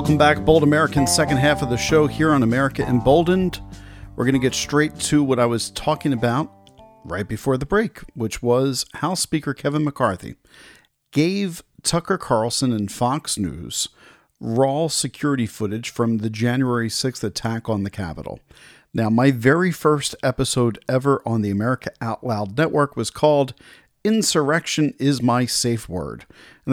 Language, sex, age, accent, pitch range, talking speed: English, male, 40-59, American, 115-145 Hz, 160 wpm